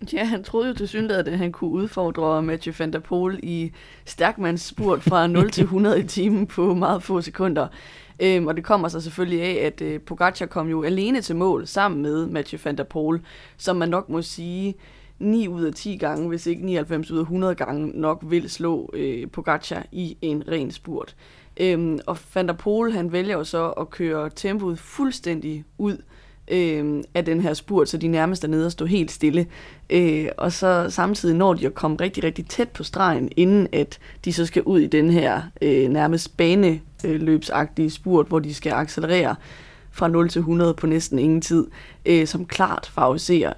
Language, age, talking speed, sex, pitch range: Danish, 20-39, 185 wpm, female, 155-180 Hz